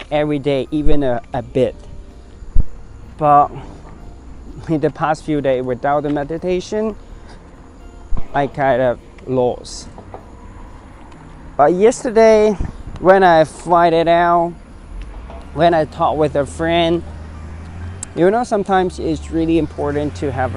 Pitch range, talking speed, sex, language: 95-155 Hz, 115 wpm, male, English